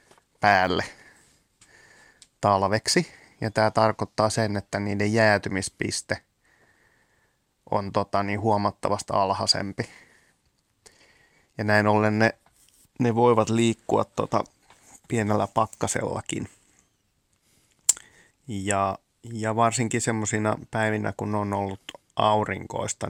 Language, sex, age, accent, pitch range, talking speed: Finnish, male, 20-39, native, 100-110 Hz, 85 wpm